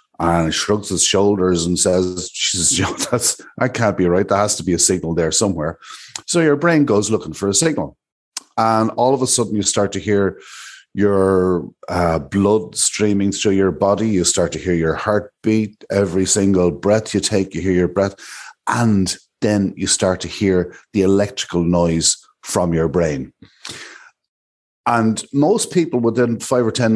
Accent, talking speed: Irish, 170 wpm